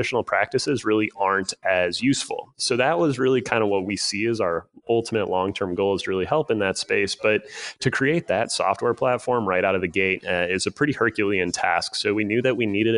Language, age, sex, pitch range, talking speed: English, 30-49, male, 95-115 Hz, 225 wpm